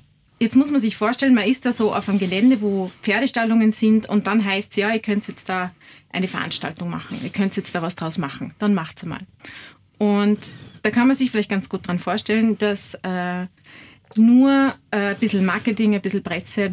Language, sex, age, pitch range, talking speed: German, female, 30-49, 195-220 Hz, 210 wpm